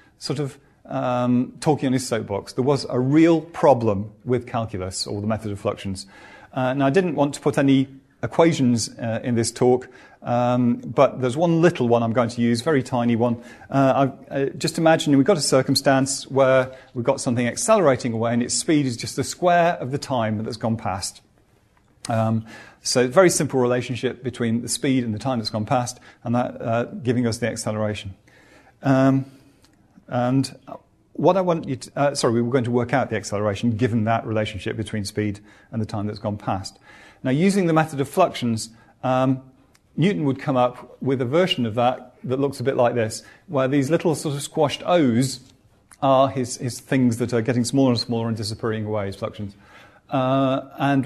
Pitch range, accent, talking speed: 115-140 Hz, British, 200 wpm